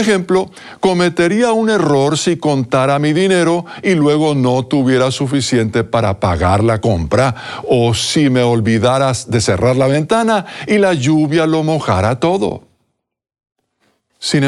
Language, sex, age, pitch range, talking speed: Spanish, male, 50-69, 110-160 Hz, 135 wpm